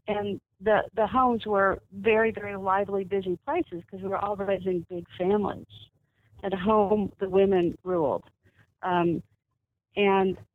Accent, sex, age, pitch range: American, female, 50-69, 190-235 Hz